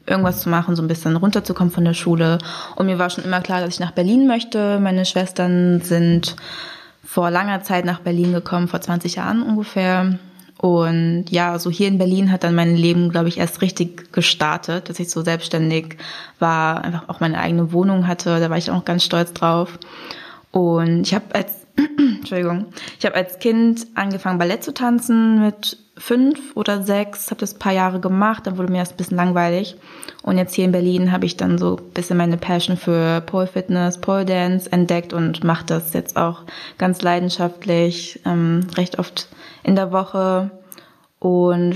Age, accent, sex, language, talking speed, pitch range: 20-39, German, female, German, 185 wpm, 170-190 Hz